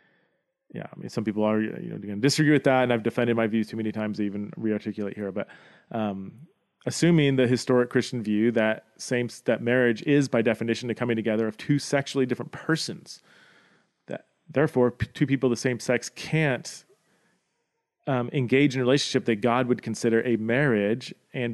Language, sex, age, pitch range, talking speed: English, male, 30-49, 115-145 Hz, 190 wpm